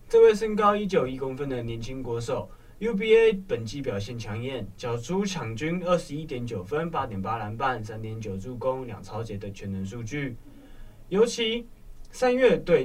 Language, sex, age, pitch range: Chinese, male, 20-39, 110-170 Hz